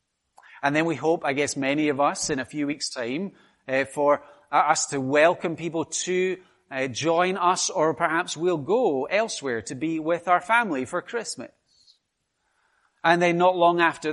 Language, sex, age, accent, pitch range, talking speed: English, male, 30-49, British, 115-170 Hz, 175 wpm